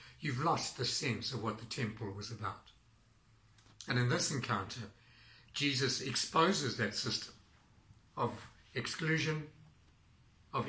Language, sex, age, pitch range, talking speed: English, male, 60-79, 105-125 Hz, 120 wpm